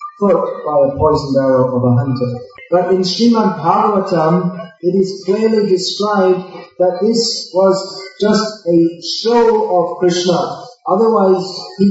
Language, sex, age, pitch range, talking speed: English, male, 40-59, 165-195 Hz, 130 wpm